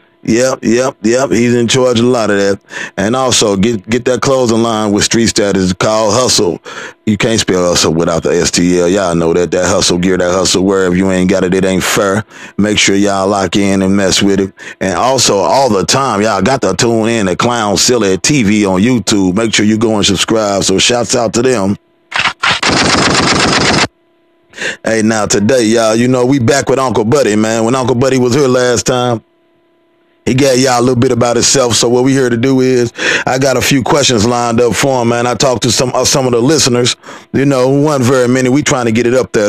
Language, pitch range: English, 105-130 Hz